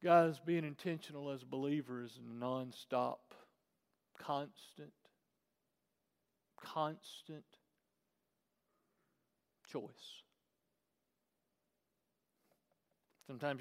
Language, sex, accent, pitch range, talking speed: English, male, American, 140-185 Hz, 55 wpm